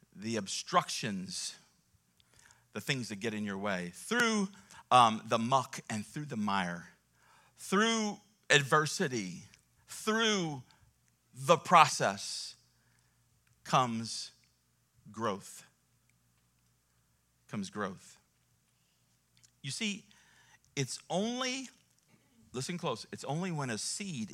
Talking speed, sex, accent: 90 wpm, male, American